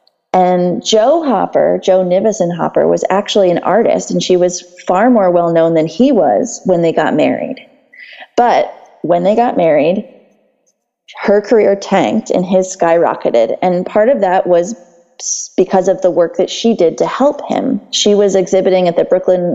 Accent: American